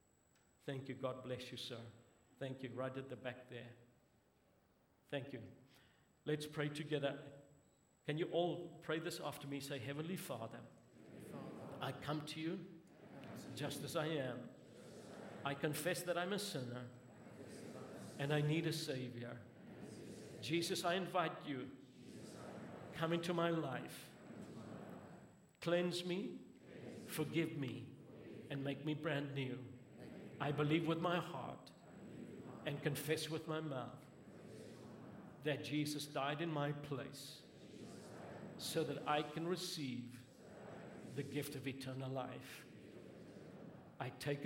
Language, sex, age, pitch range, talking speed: English, male, 50-69, 125-155 Hz, 125 wpm